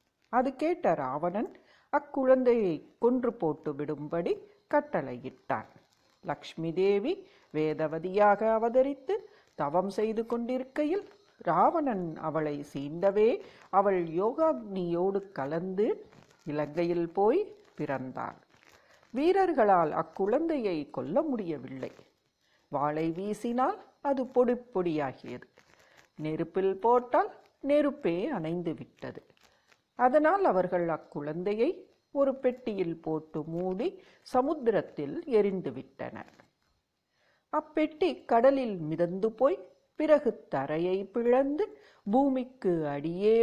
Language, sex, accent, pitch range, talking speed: English, female, Indian, 170-280 Hz, 85 wpm